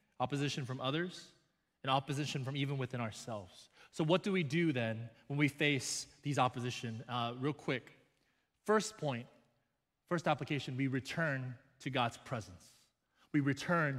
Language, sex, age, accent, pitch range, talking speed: English, male, 20-39, American, 120-170 Hz, 145 wpm